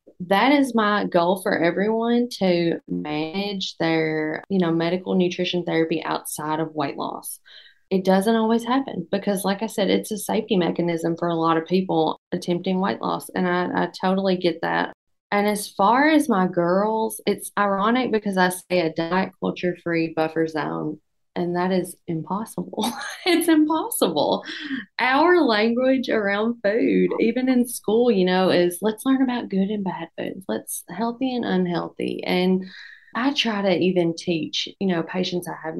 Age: 20-39